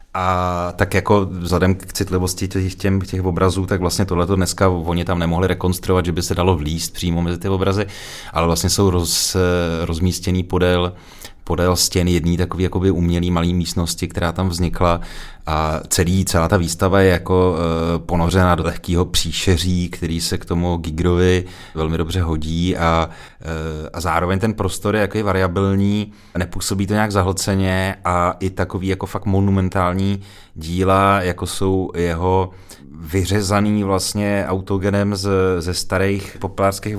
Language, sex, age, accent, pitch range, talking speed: Czech, male, 30-49, native, 90-95 Hz, 150 wpm